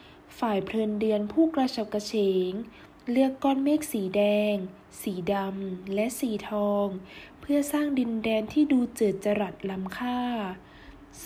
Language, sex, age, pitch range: Thai, female, 20-39, 205-265 Hz